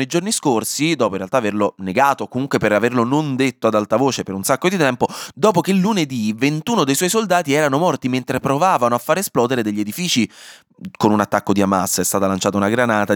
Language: Italian